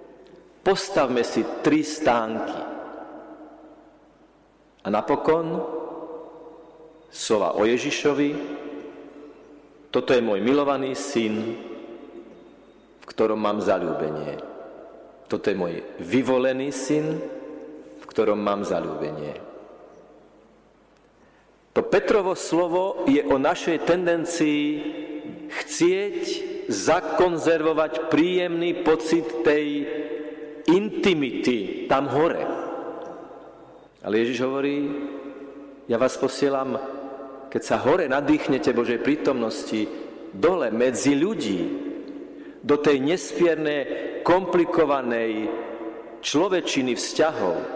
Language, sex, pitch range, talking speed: Slovak, male, 135-170 Hz, 80 wpm